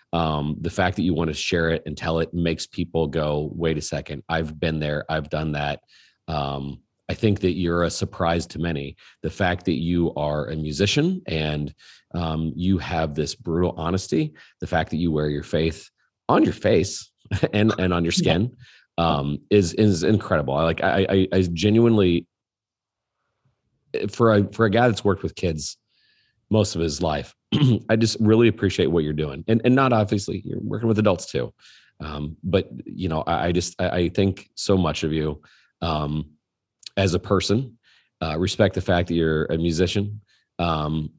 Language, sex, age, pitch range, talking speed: English, male, 40-59, 75-100 Hz, 185 wpm